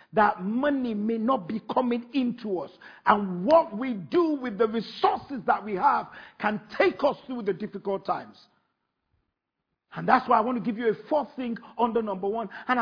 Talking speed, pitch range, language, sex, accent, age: 185 wpm, 240-320 Hz, English, male, Nigerian, 50-69